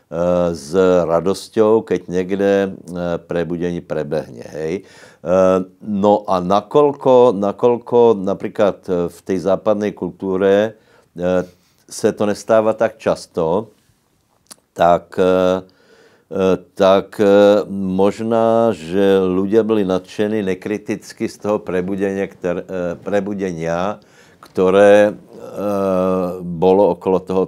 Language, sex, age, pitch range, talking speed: Slovak, male, 60-79, 90-100 Hz, 85 wpm